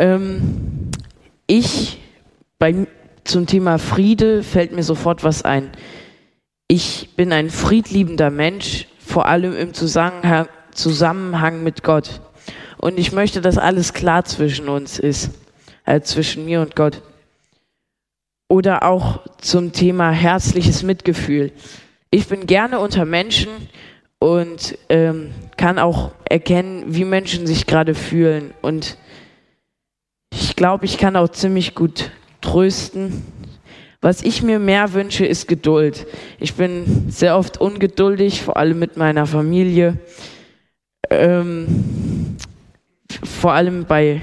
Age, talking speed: 20-39, 115 wpm